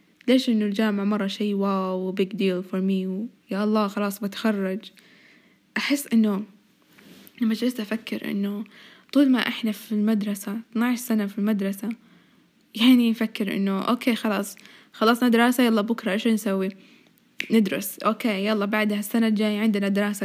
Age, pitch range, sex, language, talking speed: 10-29, 205-230 Hz, female, Arabic, 140 wpm